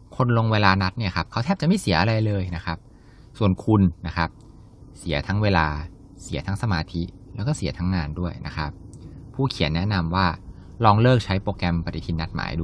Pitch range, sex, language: 85-110 Hz, male, Thai